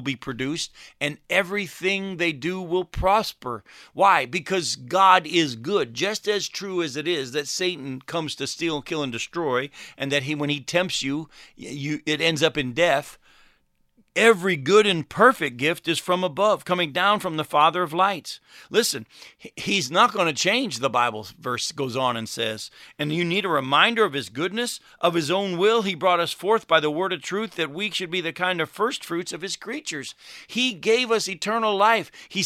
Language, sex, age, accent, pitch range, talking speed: English, male, 50-69, American, 155-215 Hz, 200 wpm